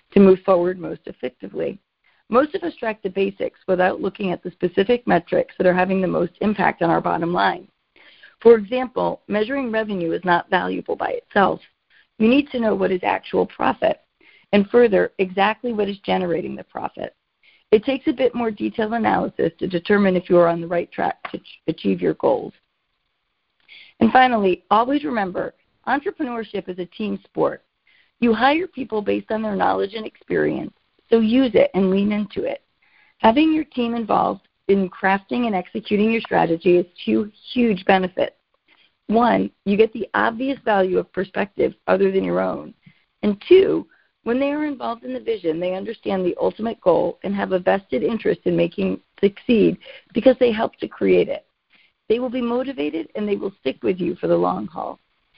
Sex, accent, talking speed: female, American, 180 wpm